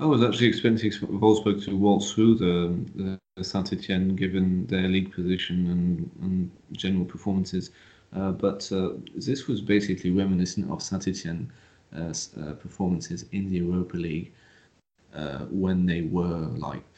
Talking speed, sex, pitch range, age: 140 wpm, male, 90-100 Hz, 30-49